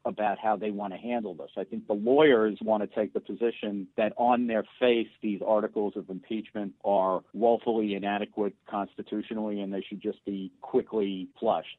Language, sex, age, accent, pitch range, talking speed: English, male, 50-69, American, 100-115 Hz, 180 wpm